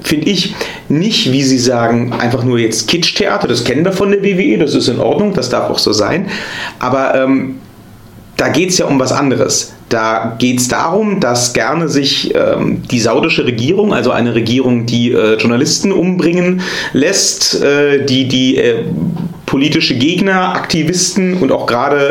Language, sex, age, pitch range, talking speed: German, male, 40-59, 130-185 Hz, 170 wpm